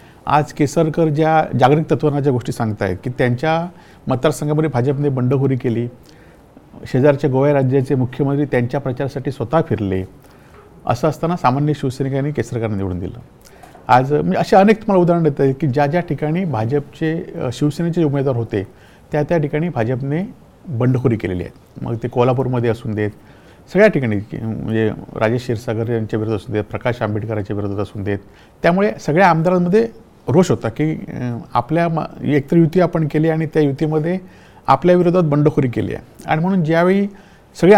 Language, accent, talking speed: Marathi, native, 150 wpm